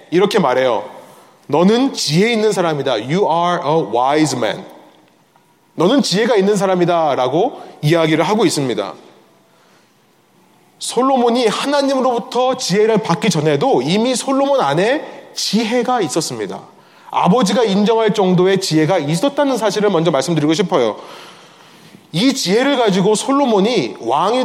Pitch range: 165-225 Hz